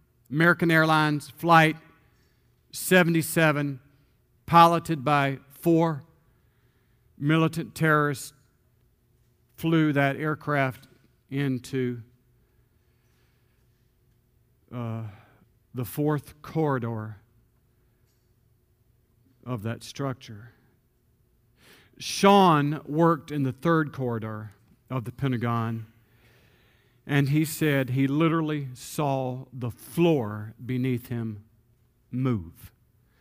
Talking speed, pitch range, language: 70 wpm, 120-160 Hz, English